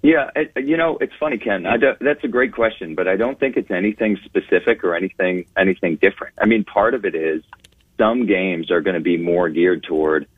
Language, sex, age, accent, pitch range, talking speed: English, male, 40-59, American, 100-130 Hz, 210 wpm